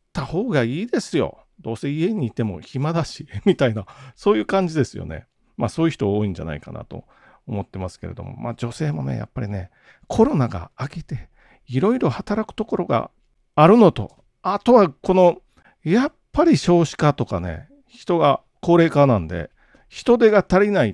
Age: 40-59